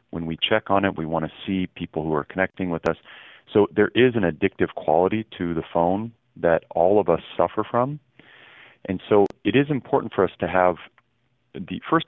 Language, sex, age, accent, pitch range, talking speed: English, male, 40-59, American, 85-105 Hz, 205 wpm